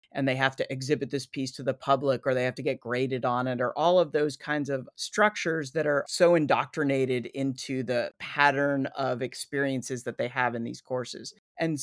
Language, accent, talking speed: English, American, 210 wpm